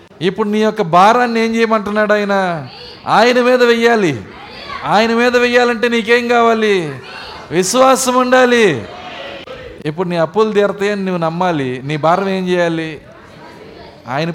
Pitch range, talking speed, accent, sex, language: 165-230 Hz, 115 wpm, native, male, Telugu